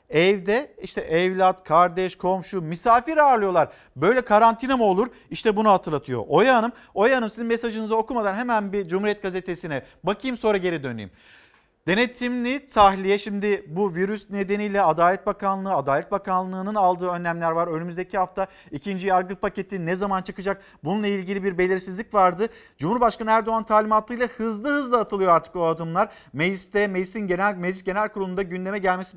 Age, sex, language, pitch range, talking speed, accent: 50-69, male, Turkish, 185-225 Hz, 150 wpm, native